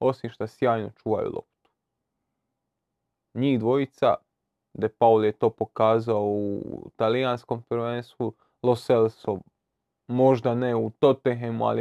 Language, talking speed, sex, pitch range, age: Croatian, 105 wpm, male, 115-135 Hz, 20-39